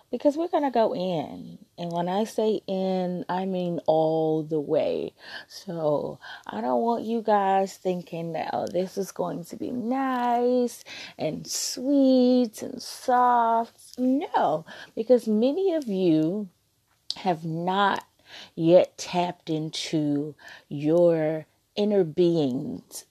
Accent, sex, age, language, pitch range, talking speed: American, female, 30-49, English, 155-210 Hz, 120 wpm